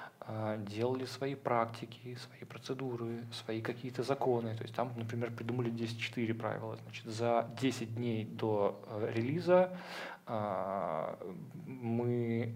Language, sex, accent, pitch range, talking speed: Russian, male, native, 115-130 Hz, 105 wpm